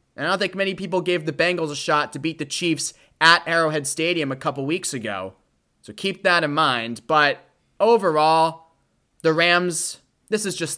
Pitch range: 125-165 Hz